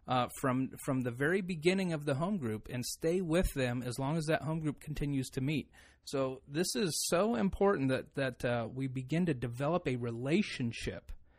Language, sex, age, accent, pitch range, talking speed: English, male, 30-49, American, 125-160 Hz, 195 wpm